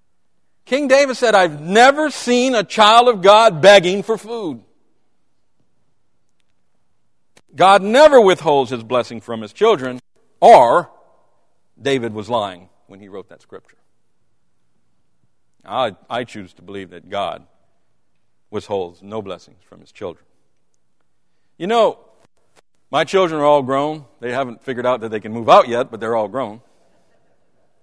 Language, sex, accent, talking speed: English, male, American, 140 wpm